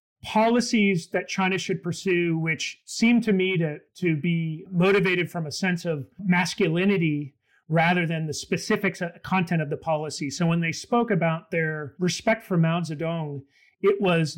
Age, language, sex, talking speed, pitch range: 40-59, English, male, 165 wpm, 155-180 Hz